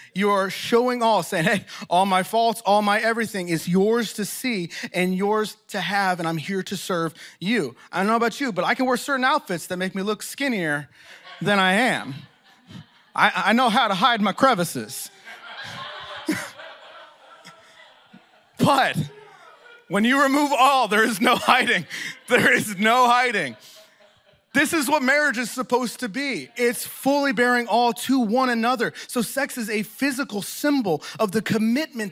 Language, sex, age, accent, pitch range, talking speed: English, male, 30-49, American, 175-235 Hz, 165 wpm